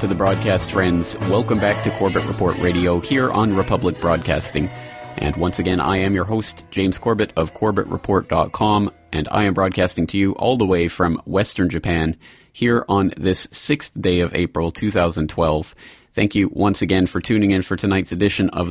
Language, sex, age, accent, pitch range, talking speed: English, male, 30-49, American, 90-110 Hz, 180 wpm